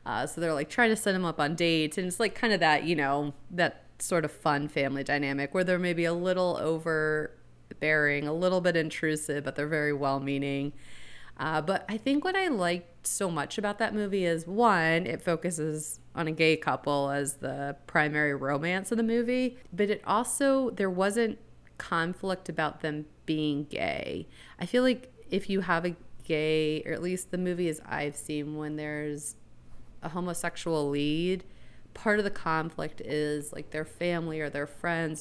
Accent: American